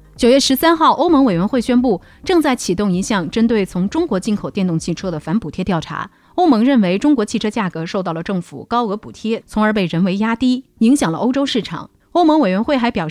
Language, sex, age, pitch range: Chinese, female, 30-49, 185-260 Hz